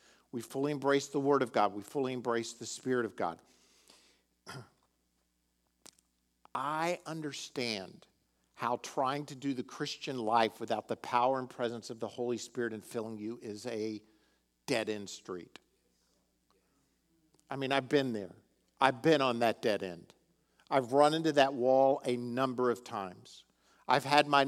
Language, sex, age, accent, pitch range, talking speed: English, male, 50-69, American, 105-145 Hz, 150 wpm